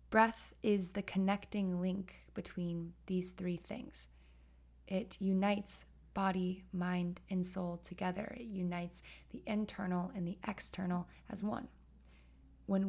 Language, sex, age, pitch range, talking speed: English, female, 20-39, 175-200 Hz, 120 wpm